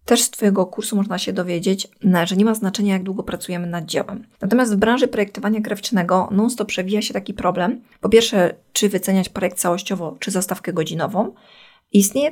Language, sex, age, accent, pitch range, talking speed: Polish, female, 20-39, native, 180-210 Hz, 175 wpm